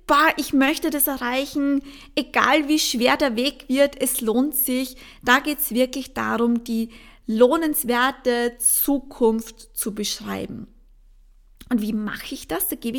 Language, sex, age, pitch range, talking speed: English, female, 20-39, 230-285 Hz, 140 wpm